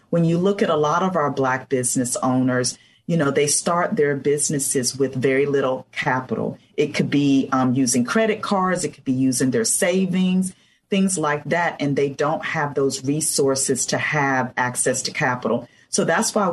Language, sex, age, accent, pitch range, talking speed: English, female, 40-59, American, 135-170 Hz, 185 wpm